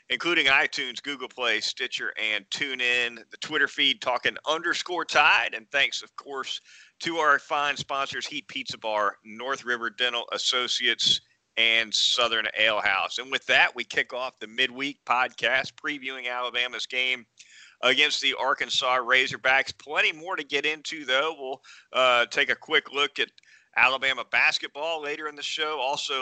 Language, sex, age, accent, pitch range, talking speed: English, male, 40-59, American, 115-140 Hz, 155 wpm